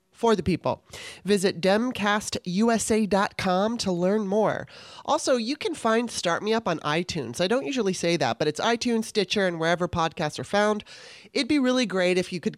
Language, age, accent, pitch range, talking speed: English, 30-49, American, 165-220 Hz, 180 wpm